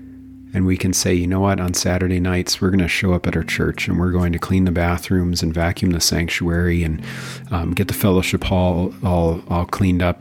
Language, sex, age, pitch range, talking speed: English, male, 40-59, 90-100 Hz, 230 wpm